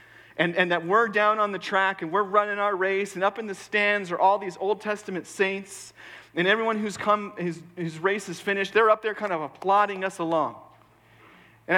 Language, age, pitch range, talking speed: English, 40-59, 140-195 Hz, 210 wpm